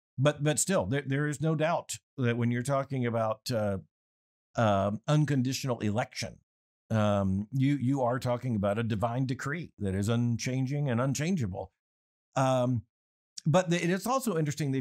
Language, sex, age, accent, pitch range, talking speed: English, male, 50-69, American, 110-145 Hz, 155 wpm